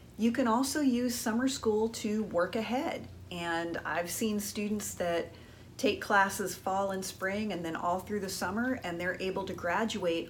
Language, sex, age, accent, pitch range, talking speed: English, female, 40-59, American, 175-225 Hz, 175 wpm